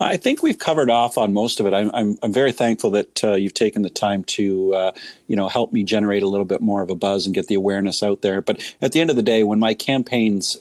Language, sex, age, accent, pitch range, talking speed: English, male, 40-59, American, 100-115 Hz, 285 wpm